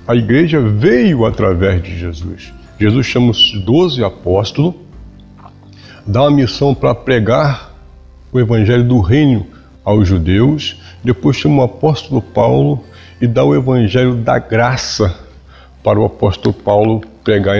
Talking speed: 130 wpm